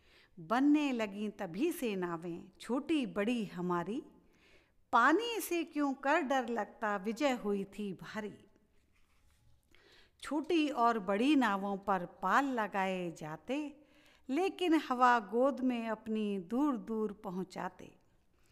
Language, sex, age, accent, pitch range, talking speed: Hindi, female, 50-69, native, 195-265 Hz, 110 wpm